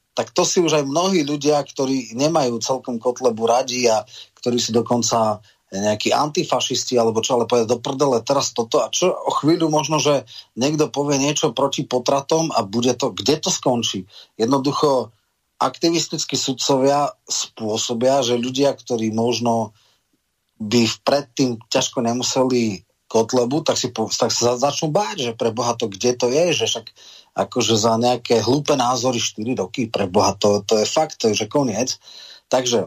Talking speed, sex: 160 wpm, male